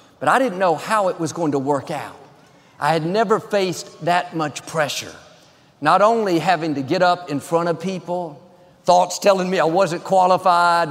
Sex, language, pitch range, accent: male, English, 160-205 Hz, American